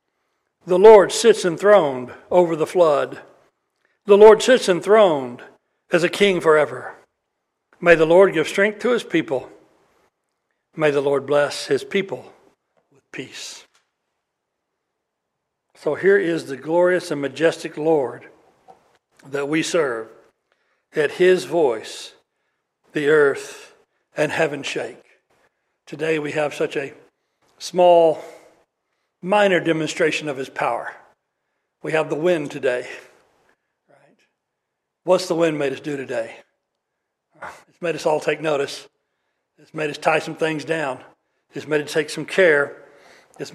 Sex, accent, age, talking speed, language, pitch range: male, American, 60-79, 130 wpm, English, 150-200 Hz